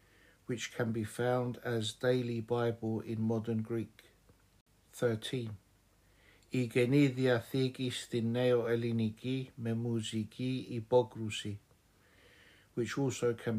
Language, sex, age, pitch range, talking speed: Greek, male, 60-79, 105-125 Hz, 65 wpm